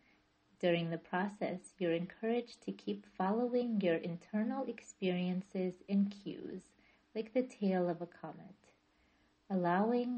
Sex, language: female, English